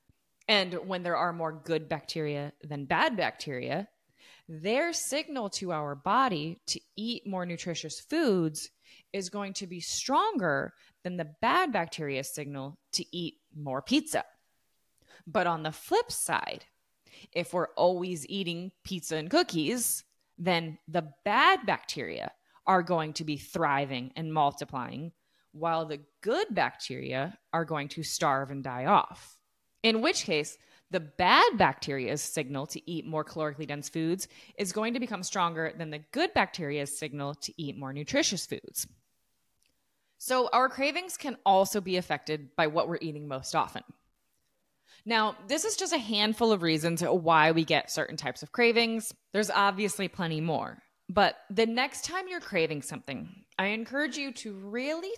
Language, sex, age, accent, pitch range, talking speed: English, female, 20-39, American, 155-220 Hz, 150 wpm